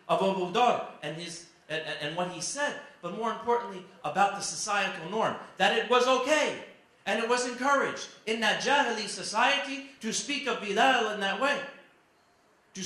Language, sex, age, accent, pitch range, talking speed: English, male, 40-59, American, 200-260 Hz, 170 wpm